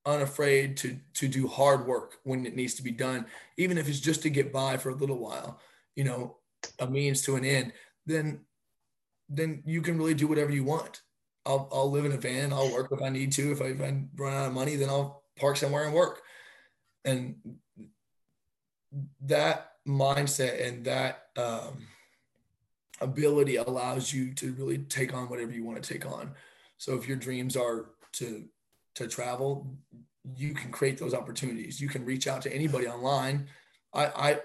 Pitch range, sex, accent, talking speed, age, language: 130-145 Hz, male, American, 180 wpm, 20-39, English